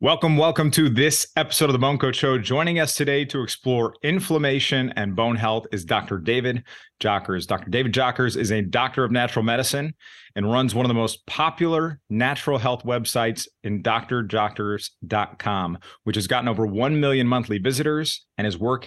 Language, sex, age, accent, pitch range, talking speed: English, male, 30-49, American, 110-135 Hz, 175 wpm